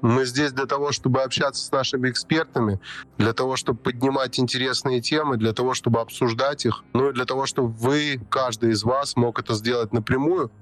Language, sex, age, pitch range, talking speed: Russian, male, 20-39, 120-140 Hz, 185 wpm